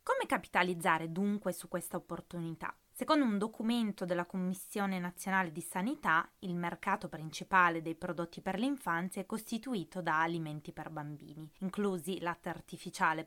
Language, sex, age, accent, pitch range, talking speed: Italian, female, 20-39, native, 165-195 Hz, 135 wpm